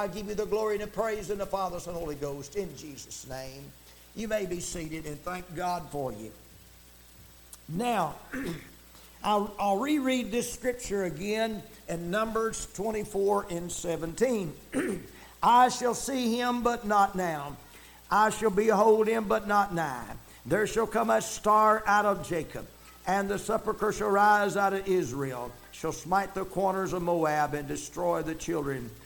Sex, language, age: male, English, 60-79